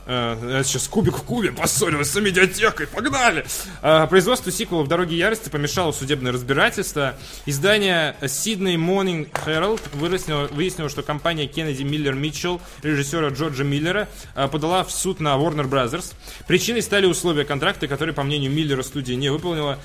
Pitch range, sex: 135-180 Hz, male